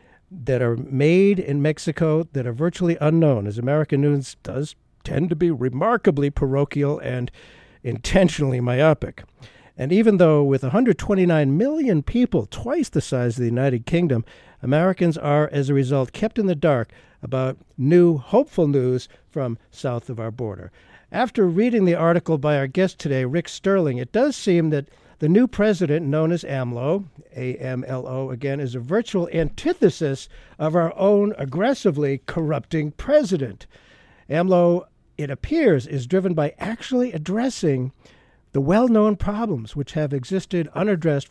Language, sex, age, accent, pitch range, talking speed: English, male, 60-79, American, 135-180 Hz, 145 wpm